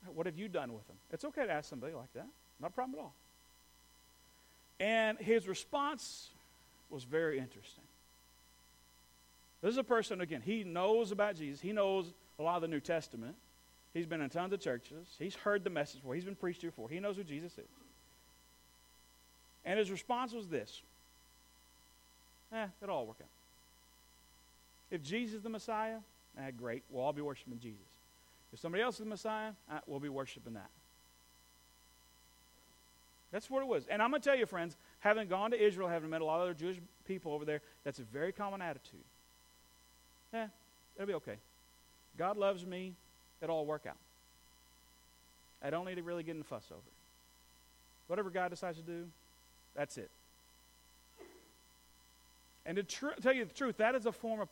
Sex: male